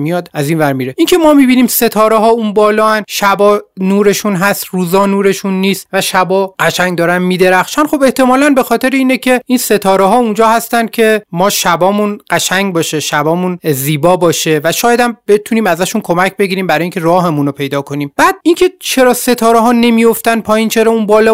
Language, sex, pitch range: Persian, male, 165-225 Hz